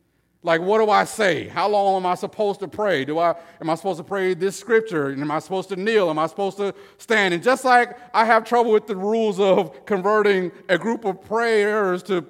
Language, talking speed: English, 230 wpm